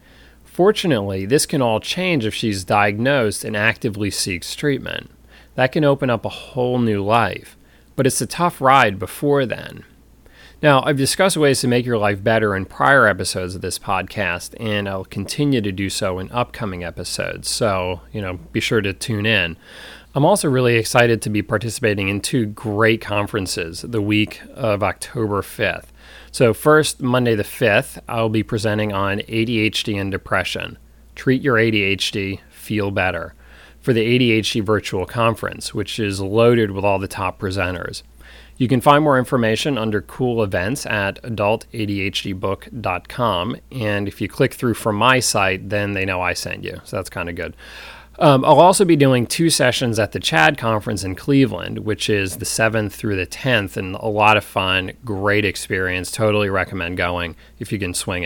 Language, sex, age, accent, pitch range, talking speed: English, male, 30-49, American, 100-125 Hz, 175 wpm